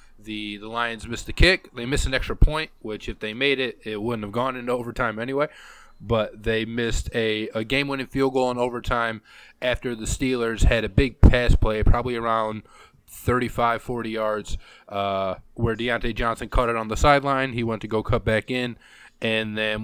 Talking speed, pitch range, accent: 195 wpm, 105-125 Hz, American